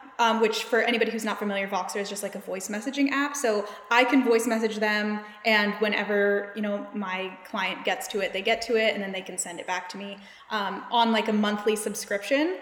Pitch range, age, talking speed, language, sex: 205-250 Hz, 10-29, 235 wpm, English, female